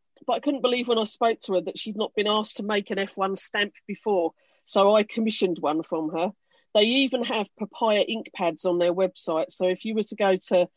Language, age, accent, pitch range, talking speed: English, 40-59, British, 180-230 Hz, 235 wpm